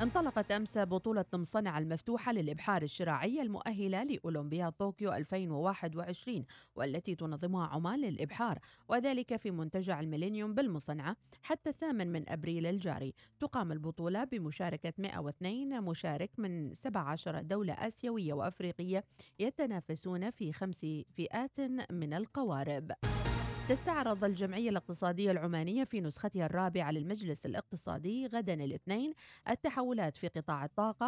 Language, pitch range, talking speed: Arabic, 160-220 Hz, 110 wpm